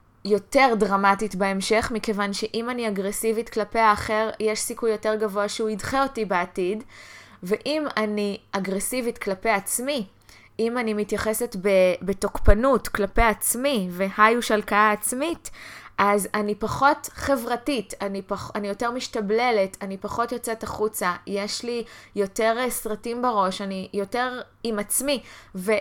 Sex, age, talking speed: female, 20-39, 125 wpm